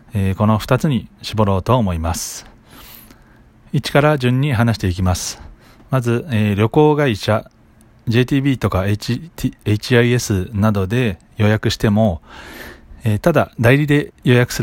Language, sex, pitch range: Japanese, male, 100-125 Hz